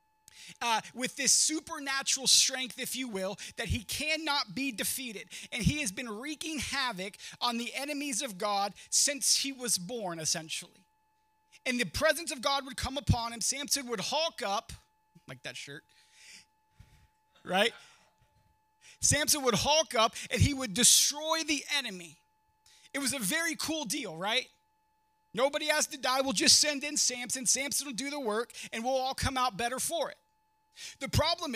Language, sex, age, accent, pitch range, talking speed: English, male, 30-49, American, 235-315 Hz, 165 wpm